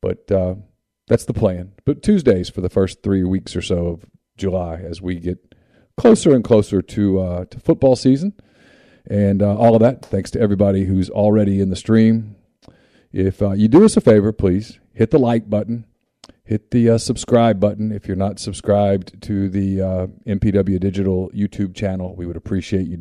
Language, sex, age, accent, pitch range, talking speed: English, male, 40-59, American, 95-110 Hz, 190 wpm